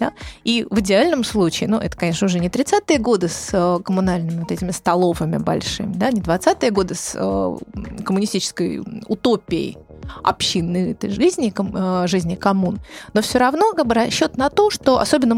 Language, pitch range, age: Russian, 190-255 Hz, 20-39